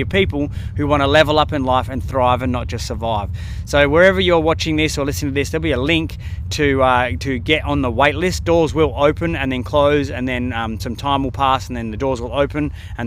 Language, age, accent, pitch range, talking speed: English, 20-39, Australian, 120-145 Hz, 255 wpm